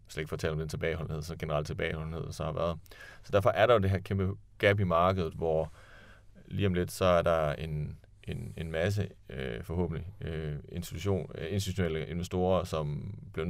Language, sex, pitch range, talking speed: Danish, male, 80-100 Hz, 180 wpm